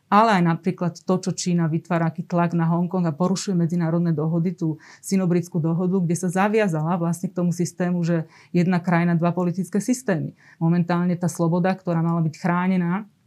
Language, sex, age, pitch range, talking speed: Slovak, female, 30-49, 170-185 Hz, 170 wpm